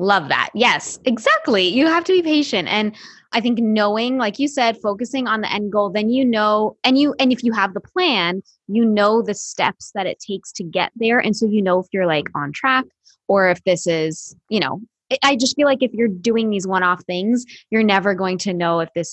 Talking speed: 230 wpm